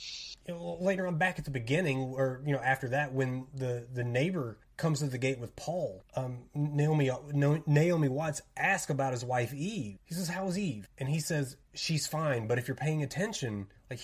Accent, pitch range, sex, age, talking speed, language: American, 130-185 Hz, male, 30-49, 200 wpm, English